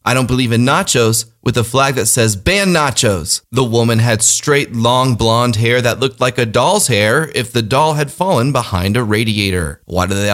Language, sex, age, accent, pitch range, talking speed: English, male, 30-49, American, 115-140 Hz, 210 wpm